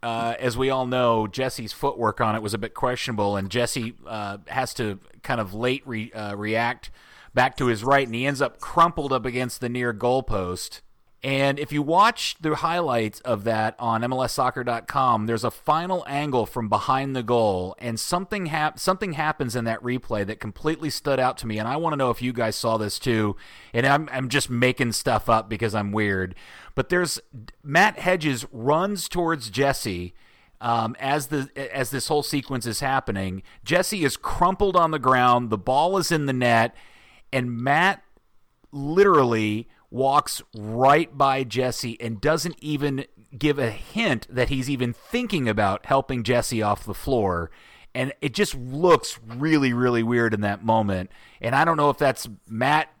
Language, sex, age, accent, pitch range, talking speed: English, male, 30-49, American, 115-145 Hz, 180 wpm